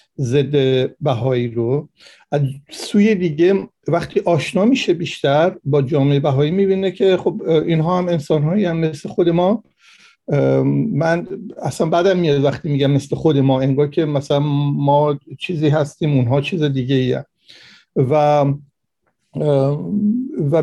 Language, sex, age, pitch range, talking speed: Persian, male, 60-79, 140-175 Hz, 125 wpm